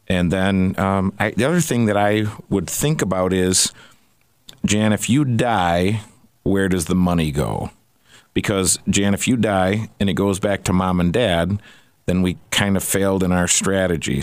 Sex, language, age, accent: male, English, 50-69, American